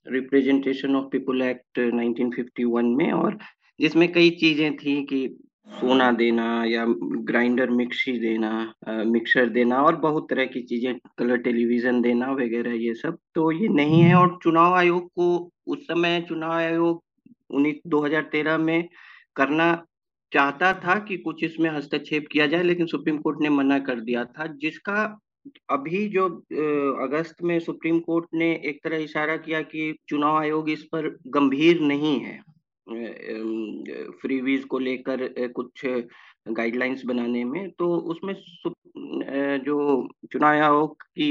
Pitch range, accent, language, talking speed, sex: 125-165 Hz, native, Hindi, 140 wpm, male